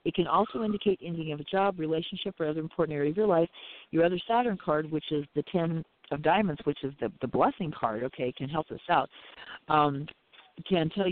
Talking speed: 215 wpm